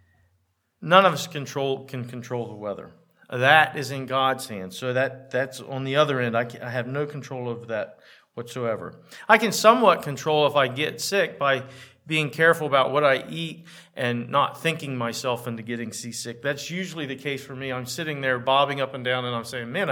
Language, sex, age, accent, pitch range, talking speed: English, male, 40-59, American, 125-165 Hz, 205 wpm